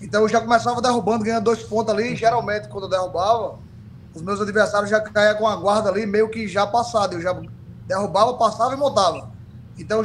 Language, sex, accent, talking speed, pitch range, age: Portuguese, male, Brazilian, 205 wpm, 185-230 Hz, 20-39